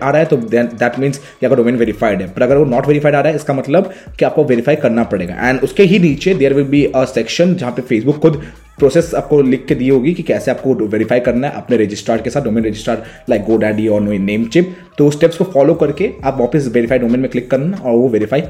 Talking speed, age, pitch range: 225 wpm, 20-39, 125-160 Hz